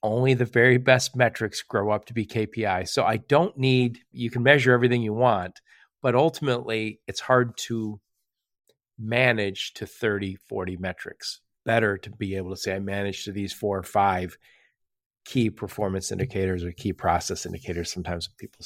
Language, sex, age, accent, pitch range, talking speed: English, male, 40-59, American, 100-125 Hz, 165 wpm